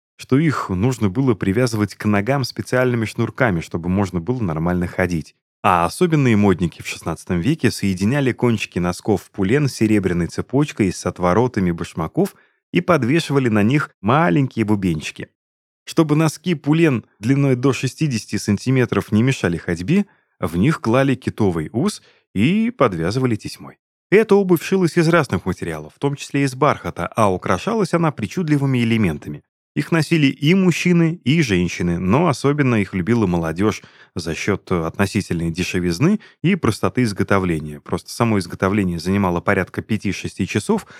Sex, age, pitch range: male, 30-49, 90-145 Hz